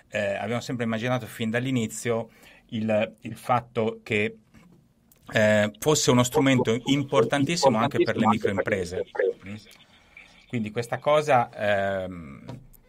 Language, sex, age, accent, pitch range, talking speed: Italian, male, 30-49, native, 100-120 Hz, 105 wpm